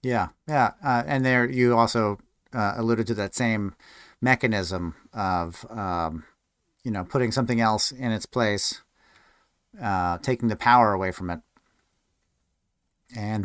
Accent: American